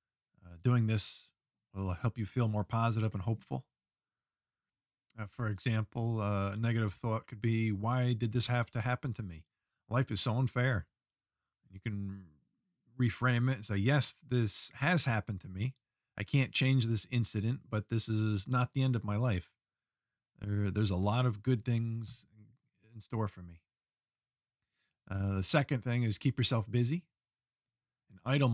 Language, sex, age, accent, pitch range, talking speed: English, male, 50-69, American, 105-130 Hz, 160 wpm